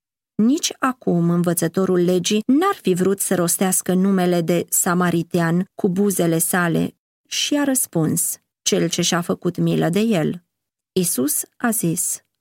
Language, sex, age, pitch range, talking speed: Romanian, female, 30-49, 170-220 Hz, 135 wpm